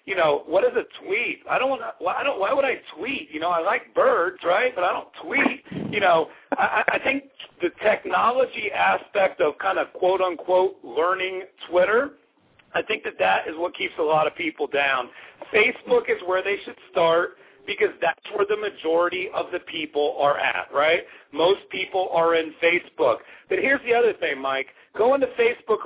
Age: 40-59